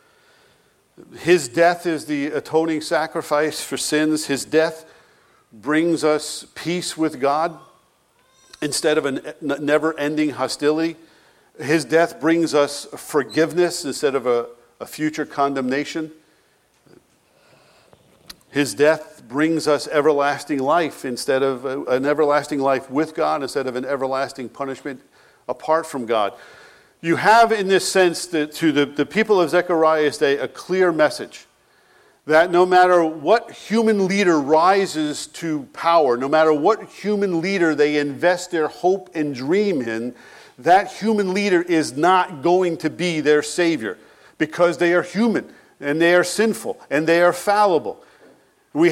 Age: 50-69